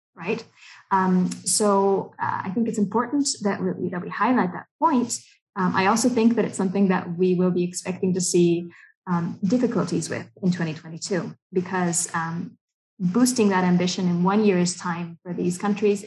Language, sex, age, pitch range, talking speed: English, female, 20-39, 180-225 Hz, 170 wpm